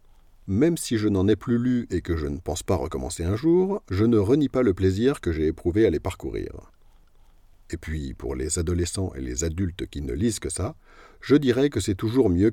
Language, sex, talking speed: French, male, 225 wpm